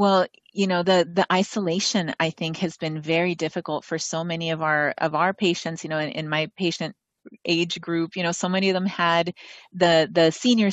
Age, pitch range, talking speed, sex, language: 30-49, 160-180 Hz, 215 wpm, female, English